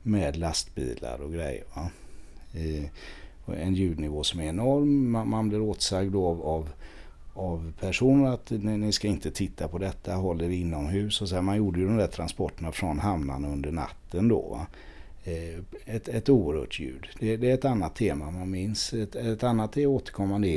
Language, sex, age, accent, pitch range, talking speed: Swedish, male, 60-79, native, 75-105 Hz, 170 wpm